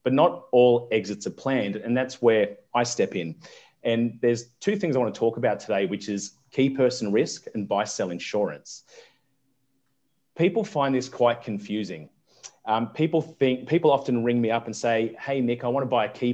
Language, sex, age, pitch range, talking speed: English, male, 30-49, 110-140 Hz, 185 wpm